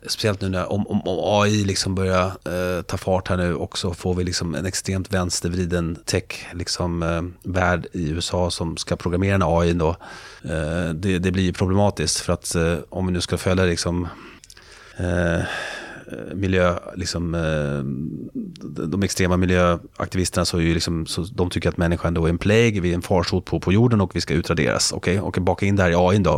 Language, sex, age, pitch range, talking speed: Swedish, male, 30-49, 85-95 Hz, 195 wpm